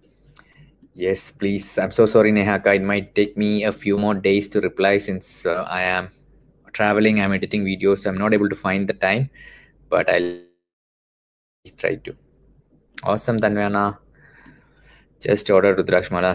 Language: English